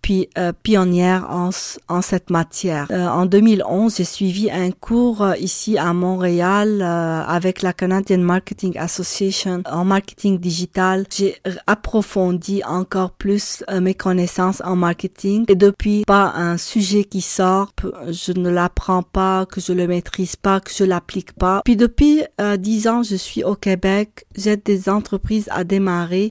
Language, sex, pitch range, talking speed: French, female, 180-205 Hz, 165 wpm